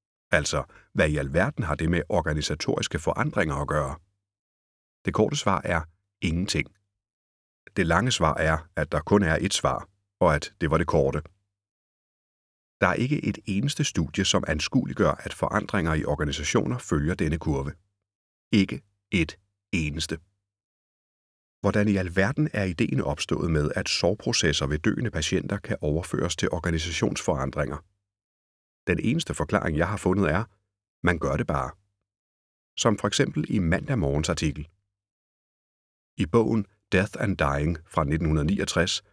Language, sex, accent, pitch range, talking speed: Danish, male, native, 75-100 Hz, 135 wpm